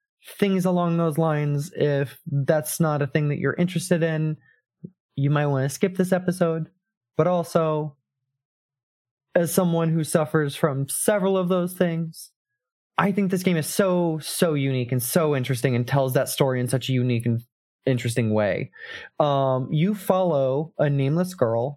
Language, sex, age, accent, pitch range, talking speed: English, male, 20-39, American, 130-175 Hz, 165 wpm